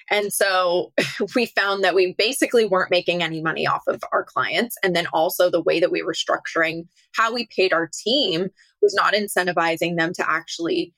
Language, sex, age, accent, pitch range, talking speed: English, female, 20-39, American, 165-225 Hz, 190 wpm